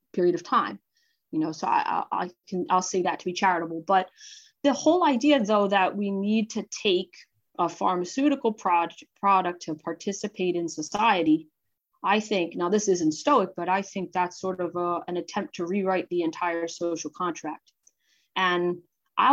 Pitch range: 180-245 Hz